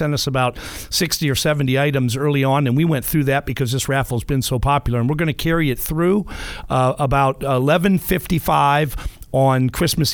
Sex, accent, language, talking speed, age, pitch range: male, American, English, 200 wpm, 50-69, 125-150 Hz